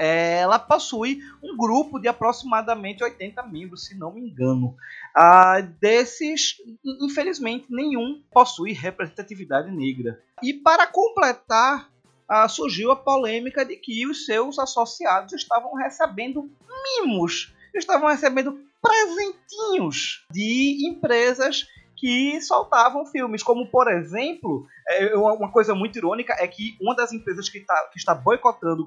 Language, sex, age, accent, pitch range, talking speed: Portuguese, male, 20-39, Brazilian, 190-290 Hz, 125 wpm